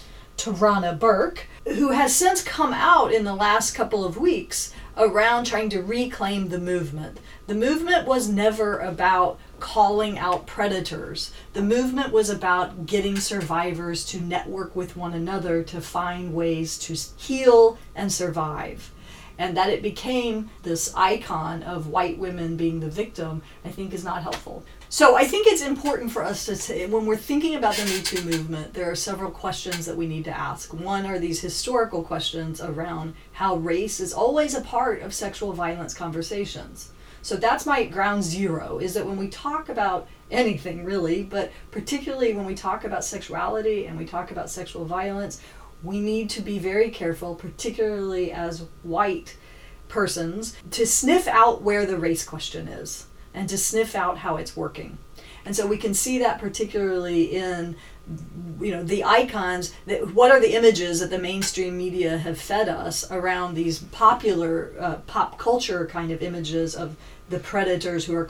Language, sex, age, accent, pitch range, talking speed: English, female, 40-59, American, 170-215 Hz, 170 wpm